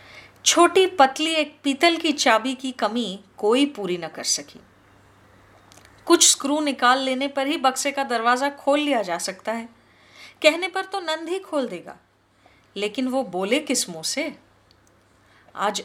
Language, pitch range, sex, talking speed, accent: Hindi, 190-285 Hz, female, 155 wpm, native